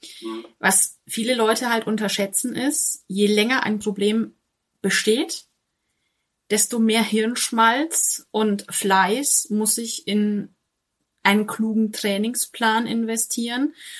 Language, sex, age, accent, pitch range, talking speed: German, female, 30-49, German, 195-235 Hz, 100 wpm